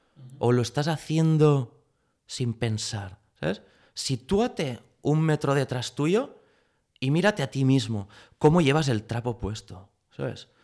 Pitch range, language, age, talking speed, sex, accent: 115-155 Hz, Spanish, 30-49, 130 wpm, male, Spanish